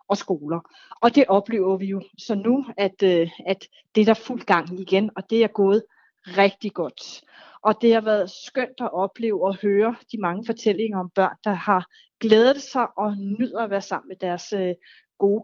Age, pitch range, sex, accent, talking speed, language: 30-49, 195-255 Hz, female, native, 190 wpm, Danish